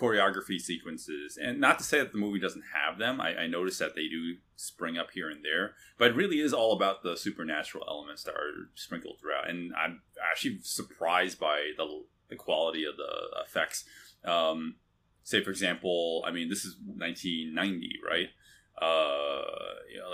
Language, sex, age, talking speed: English, male, 30-49, 180 wpm